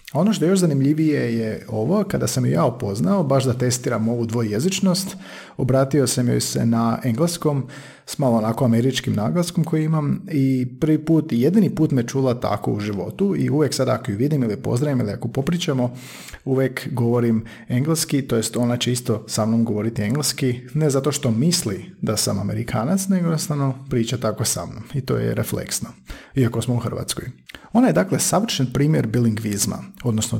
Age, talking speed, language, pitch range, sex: 40-59, 180 wpm, Croatian, 115-150 Hz, male